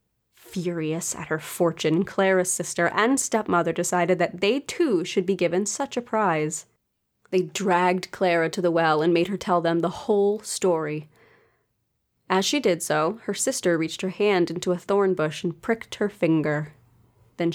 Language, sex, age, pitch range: English, female, 30-49, 170-225 Hz